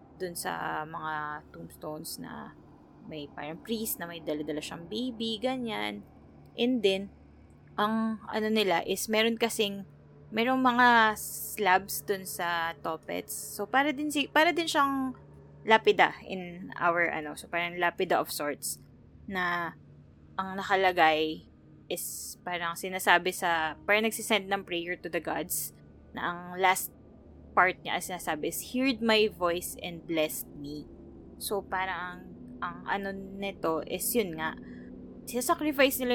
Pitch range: 160-210 Hz